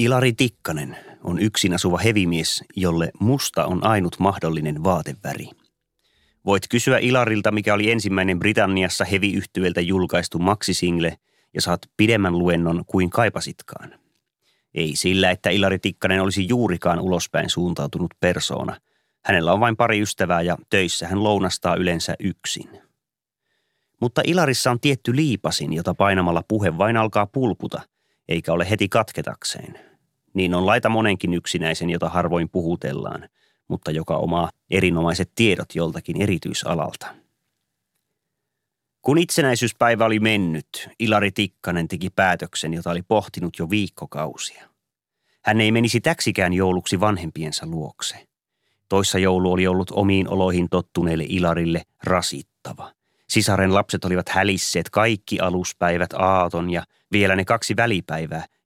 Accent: native